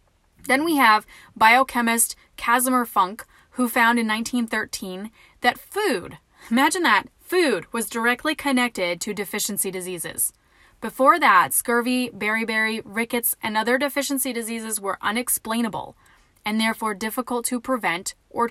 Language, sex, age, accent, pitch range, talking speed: English, female, 10-29, American, 210-255 Hz, 125 wpm